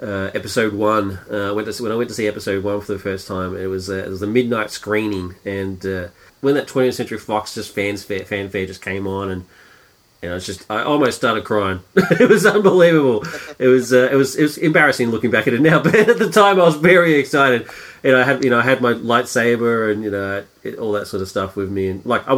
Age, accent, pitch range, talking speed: 30-49, Australian, 105-145 Hz, 255 wpm